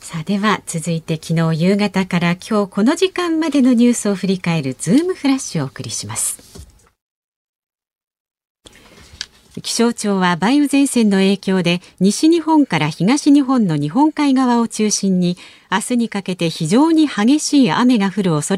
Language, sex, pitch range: Japanese, female, 165-255 Hz